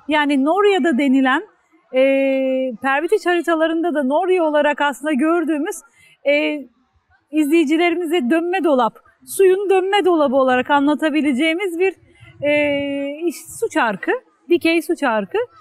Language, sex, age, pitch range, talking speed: Turkish, female, 40-59, 260-345 Hz, 110 wpm